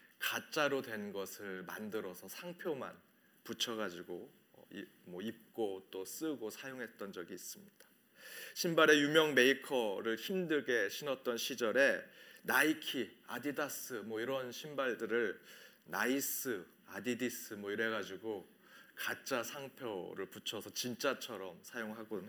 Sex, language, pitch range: male, Korean, 115-160 Hz